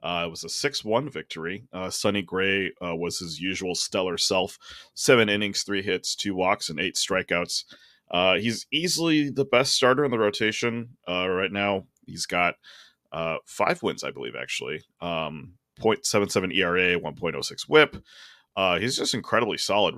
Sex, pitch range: male, 85-110 Hz